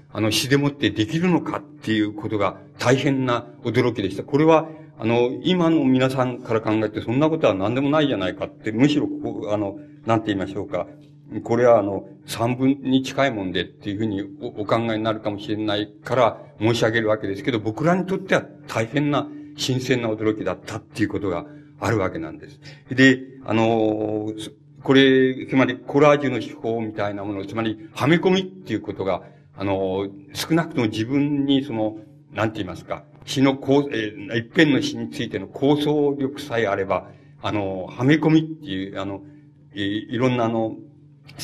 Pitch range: 110-145 Hz